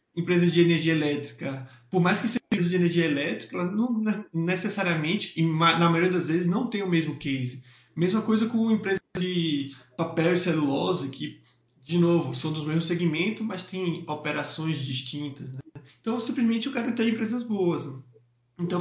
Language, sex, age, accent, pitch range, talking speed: Portuguese, male, 20-39, Brazilian, 160-215 Hz, 170 wpm